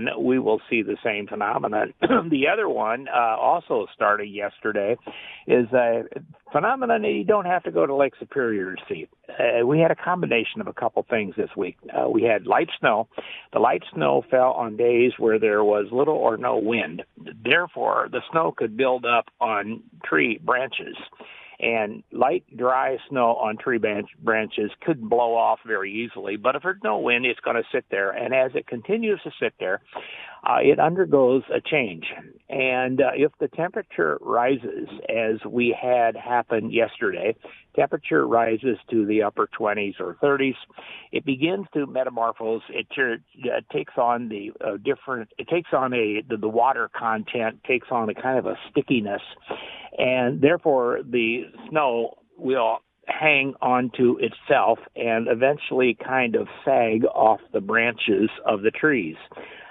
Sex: male